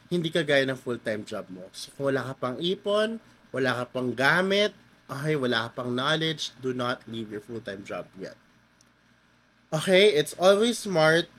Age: 20-39